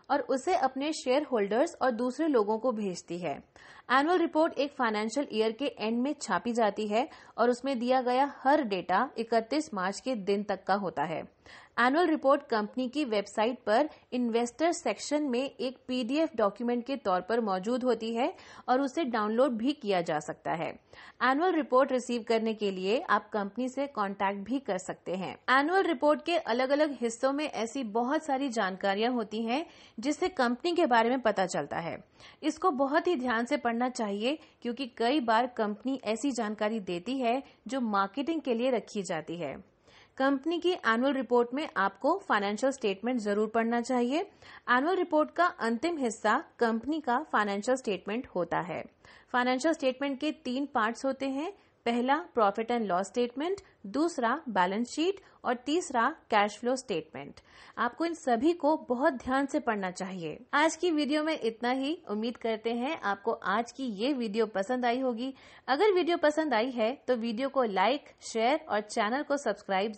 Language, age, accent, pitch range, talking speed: Hindi, 30-49, native, 220-280 Hz, 170 wpm